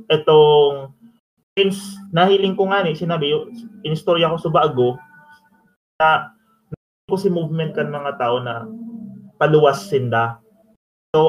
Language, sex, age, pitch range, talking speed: Filipino, male, 20-39, 125-195 Hz, 110 wpm